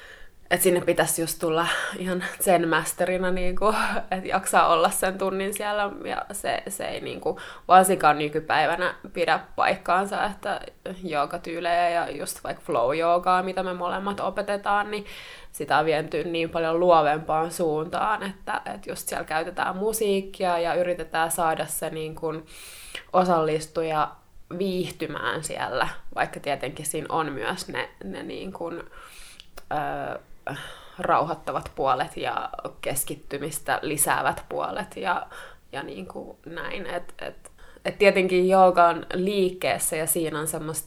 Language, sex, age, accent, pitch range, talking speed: Finnish, female, 20-39, native, 160-195 Hz, 125 wpm